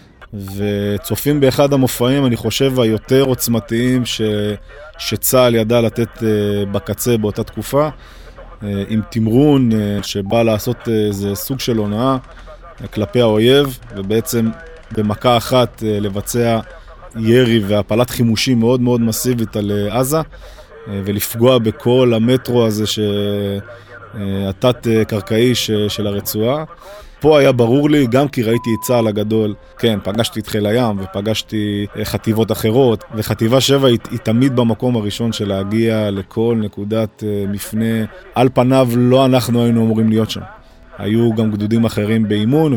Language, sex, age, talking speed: English, male, 20-39, 110 wpm